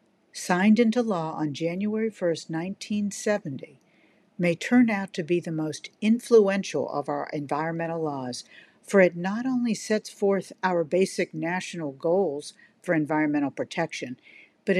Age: 50-69